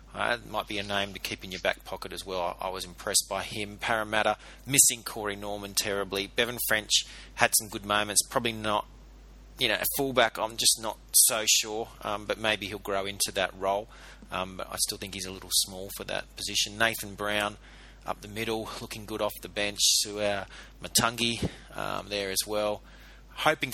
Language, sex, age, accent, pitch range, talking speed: English, male, 30-49, Australian, 100-120 Hz, 200 wpm